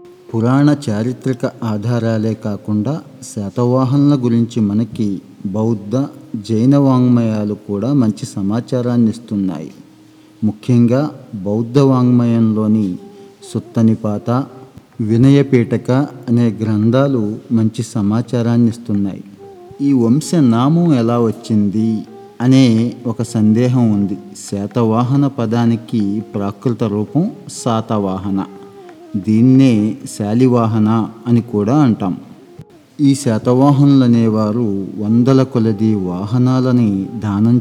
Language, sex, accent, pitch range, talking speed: Telugu, male, native, 105-125 Hz, 75 wpm